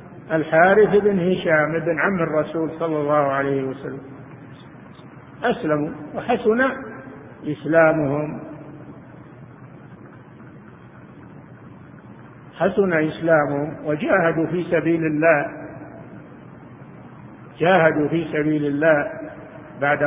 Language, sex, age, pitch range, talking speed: Arabic, male, 50-69, 150-205 Hz, 70 wpm